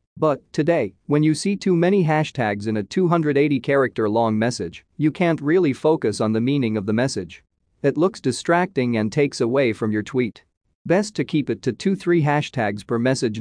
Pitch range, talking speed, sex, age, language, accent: 110-150 Hz, 180 wpm, male, 40-59, English, American